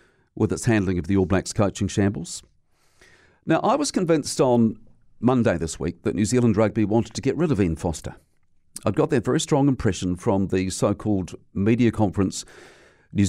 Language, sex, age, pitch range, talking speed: English, male, 50-69, 95-120 Hz, 180 wpm